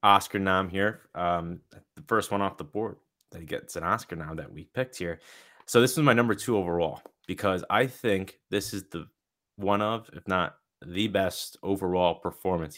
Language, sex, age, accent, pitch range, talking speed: English, male, 20-39, American, 90-120 Hz, 195 wpm